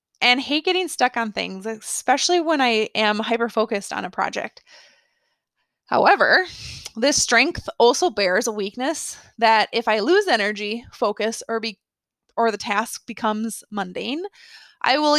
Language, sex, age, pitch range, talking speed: English, female, 20-39, 220-300 Hz, 140 wpm